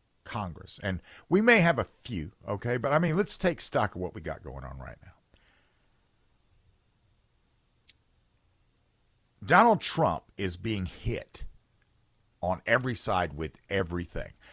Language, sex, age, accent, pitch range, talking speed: English, male, 50-69, American, 90-125 Hz, 130 wpm